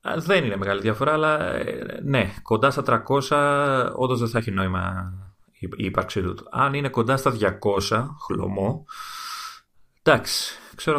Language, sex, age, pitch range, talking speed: Greek, male, 30-49, 95-120 Hz, 135 wpm